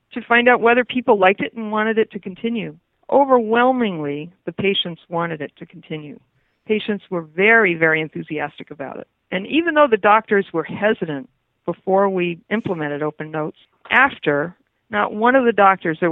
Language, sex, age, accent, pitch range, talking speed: English, female, 50-69, American, 165-210 Hz, 170 wpm